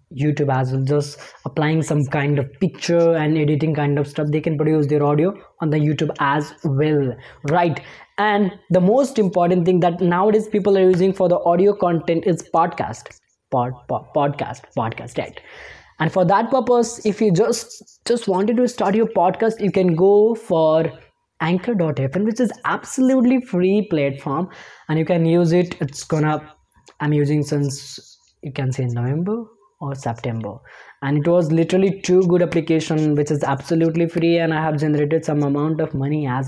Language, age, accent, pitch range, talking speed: English, 20-39, Indian, 145-185 Hz, 170 wpm